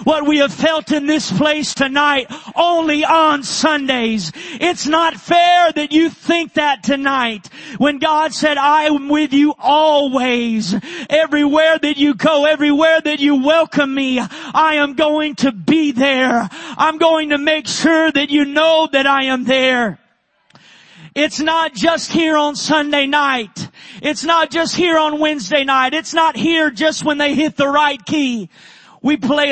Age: 40-59